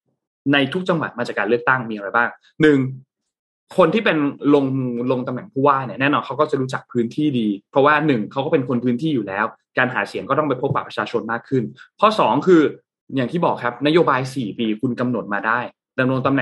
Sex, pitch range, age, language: male, 120-150 Hz, 20-39, Thai